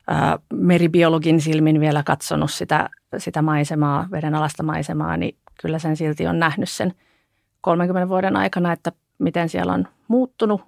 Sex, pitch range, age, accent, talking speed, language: female, 150-175 Hz, 30-49, native, 140 wpm, Finnish